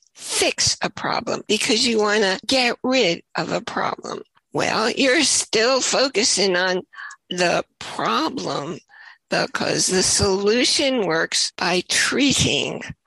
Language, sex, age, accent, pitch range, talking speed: English, female, 60-79, American, 195-260 Hz, 115 wpm